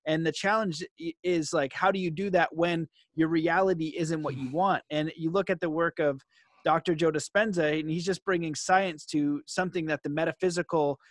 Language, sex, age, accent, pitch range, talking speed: English, male, 30-49, American, 155-185 Hz, 200 wpm